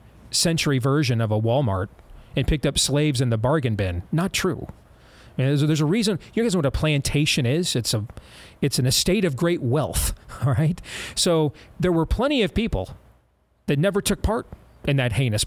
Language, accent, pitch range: English, American, 115-160 Hz